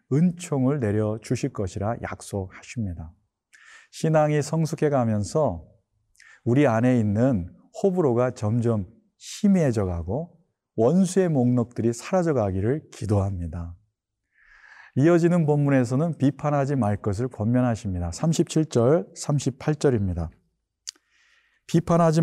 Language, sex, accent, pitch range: Korean, male, native, 110-155 Hz